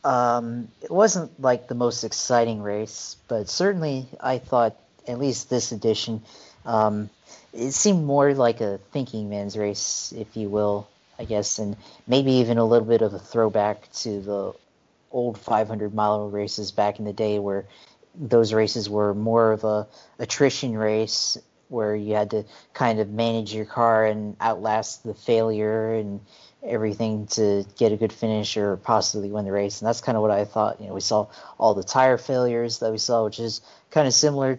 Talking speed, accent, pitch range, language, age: 180 wpm, American, 105-120 Hz, English, 40-59